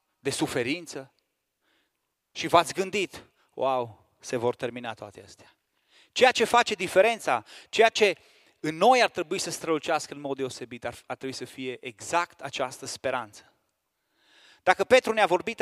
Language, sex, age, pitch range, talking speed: Romanian, male, 30-49, 135-185 Hz, 140 wpm